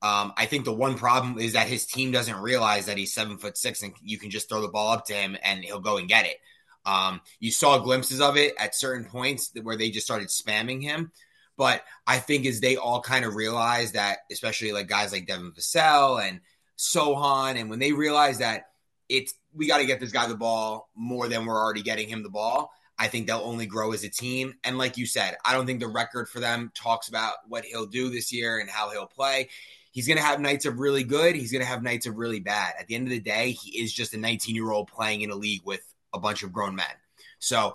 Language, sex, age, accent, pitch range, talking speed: English, male, 20-39, American, 110-135 Hz, 250 wpm